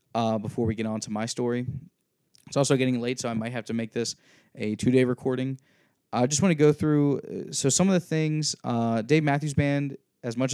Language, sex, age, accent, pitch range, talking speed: English, male, 20-39, American, 115-135 Hz, 220 wpm